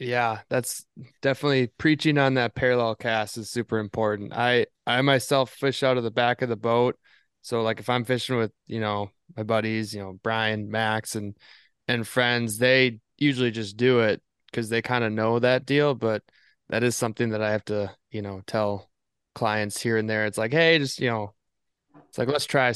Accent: American